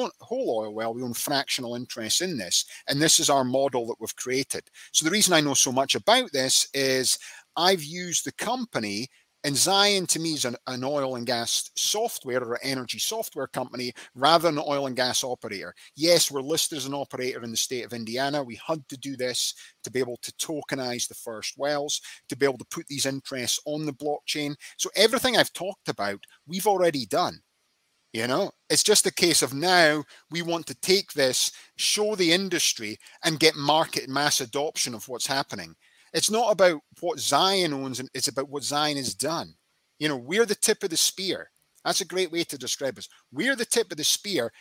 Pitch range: 130-175 Hz